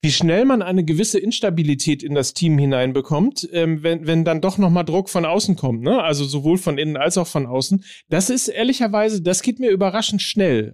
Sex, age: male, 40-59